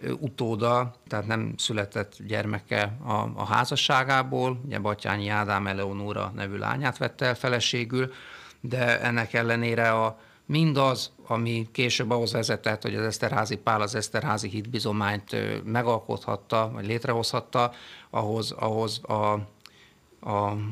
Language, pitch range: Hungarian, 105-120 Hz